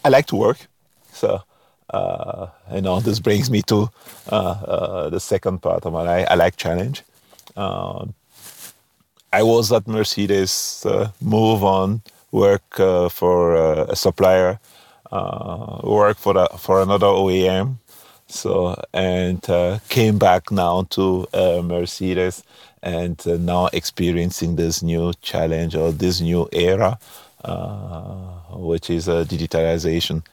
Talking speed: 135 wpm